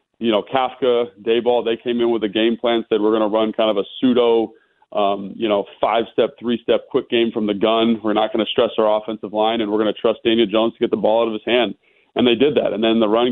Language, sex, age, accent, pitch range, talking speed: English, male, 30-49, American, 110-125 Hz, 280 wpm